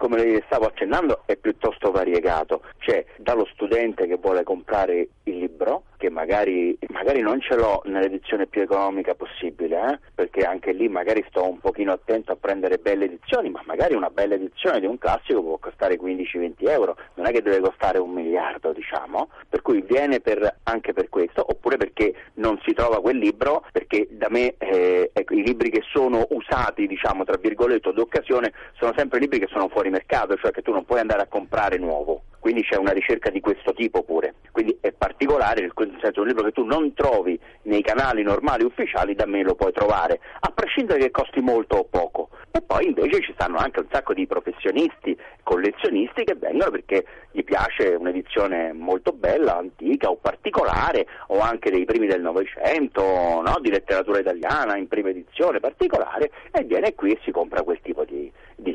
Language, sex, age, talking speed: Italian, male, 30-49, 185 wpm